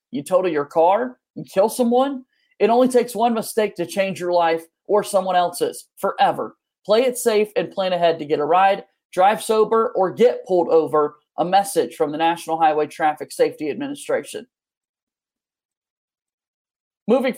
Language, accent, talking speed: English, American, 160 wpm